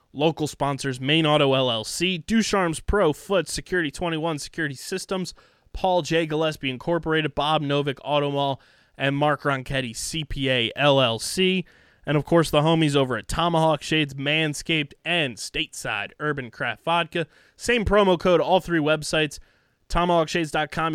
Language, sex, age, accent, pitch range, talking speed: English, male, 20-39, American, 135-170 Hz, 135 wpm